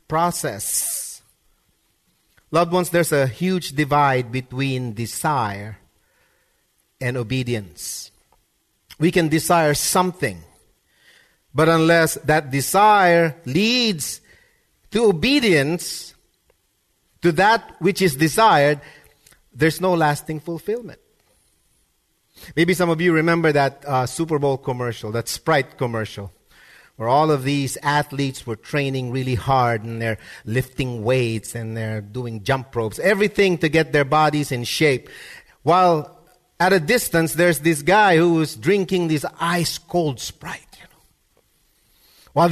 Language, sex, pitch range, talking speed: English, male, 130-180 Hz, 120 wpm